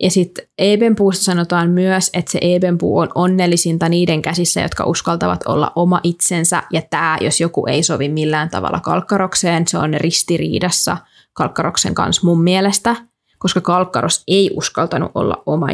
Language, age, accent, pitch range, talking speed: Finnish, 20-39, native, 165-185 Hz, 150 wpm